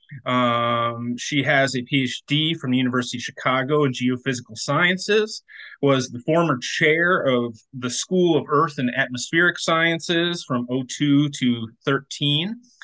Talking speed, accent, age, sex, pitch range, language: 135 wpm, American, 30-49, male, 125-150 Hz, English